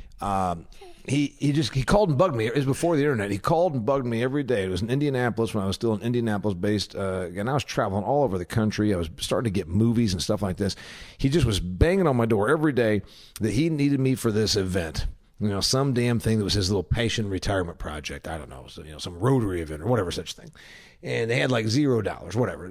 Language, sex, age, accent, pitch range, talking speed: English, male, 50-69, American, 100-155 Hz, 260 wpm